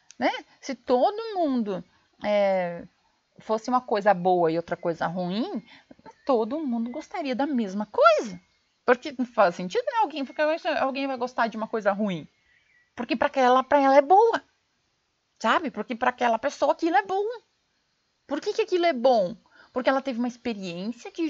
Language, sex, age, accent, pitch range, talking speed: Portuguese, female, 30-49, Brazilian, 200-290 Hz, 160 wpm